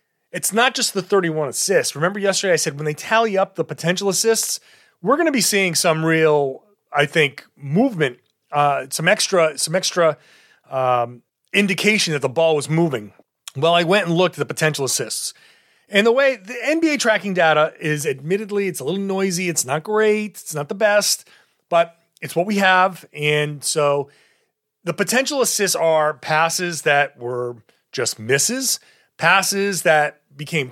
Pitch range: 150-205 Hz